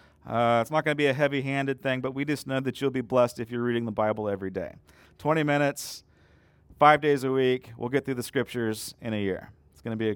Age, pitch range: 30-49, 105-140 Hz